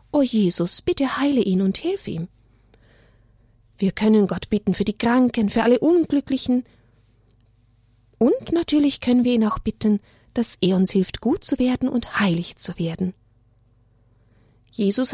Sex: female